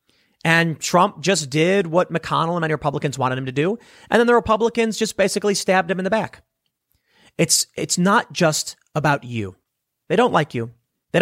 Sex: male